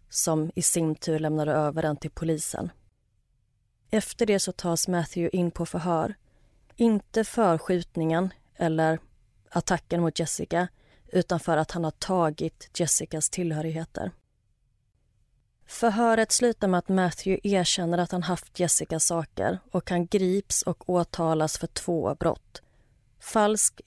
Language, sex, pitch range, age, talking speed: Swedish, female, 160-195 Hz, 30-49, 130 wpm